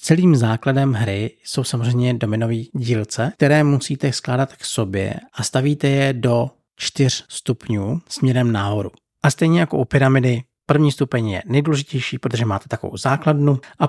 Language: Czech